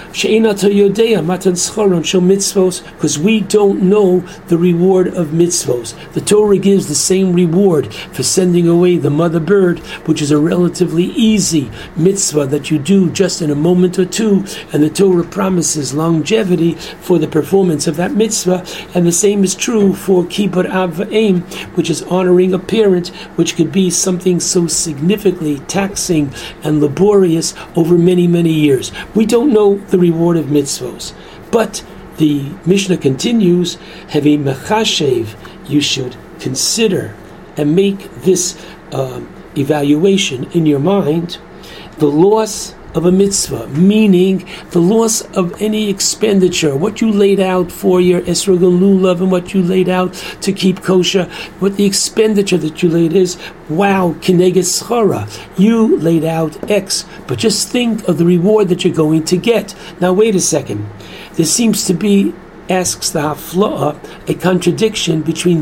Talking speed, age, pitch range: 150 wpm, 60-79, 165-195 Hz